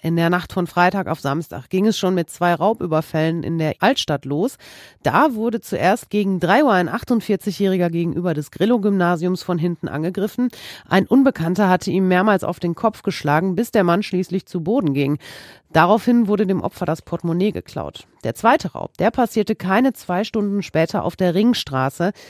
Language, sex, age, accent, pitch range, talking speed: German, female, 40-59, German, 165-205 Hz, 180 wpm